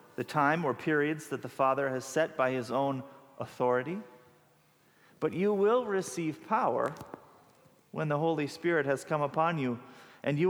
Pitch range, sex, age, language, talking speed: 135-160 Hz, male, 40-59, English, 160 wpm